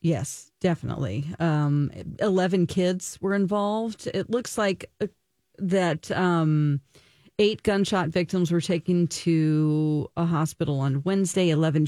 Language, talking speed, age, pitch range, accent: English, 115 wpm, 40-59, 150-185 Hz, American